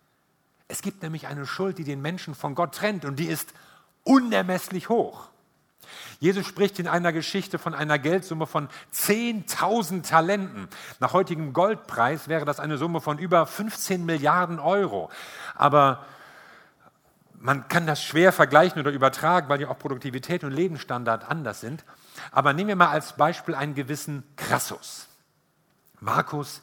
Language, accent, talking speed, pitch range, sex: German, German, 145 wpm, 140-180 Hz, male